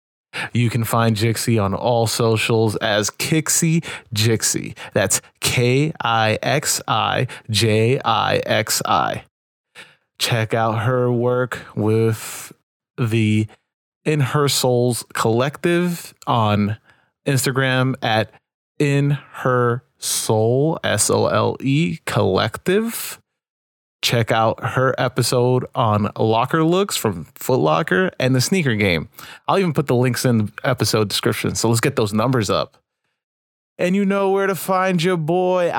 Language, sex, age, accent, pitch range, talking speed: English, male, 20-39, American, 115-140 Hz, 110 wpm